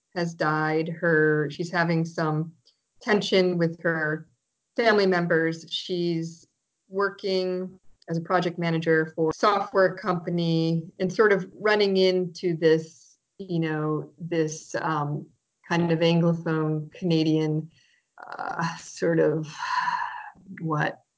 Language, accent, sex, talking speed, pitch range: English, American, female, 110 wpm, 160-180 Hz